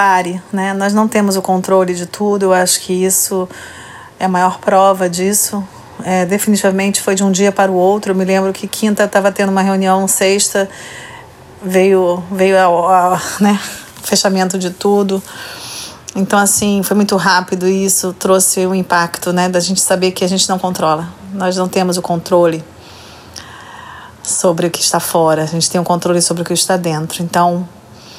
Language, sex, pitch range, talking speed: Portuguese, female, 170-190 Hz, 185 wpm